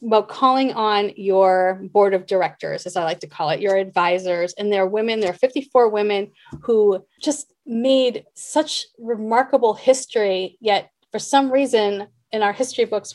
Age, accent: 30-49, American